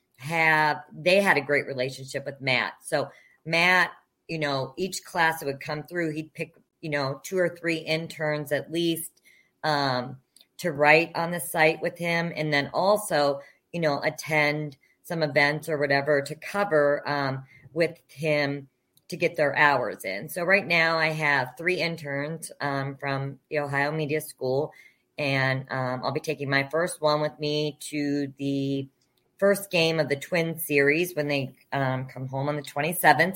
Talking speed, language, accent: 170 wpm, English, American